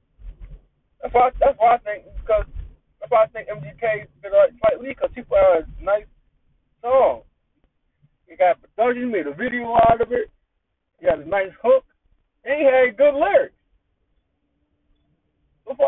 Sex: male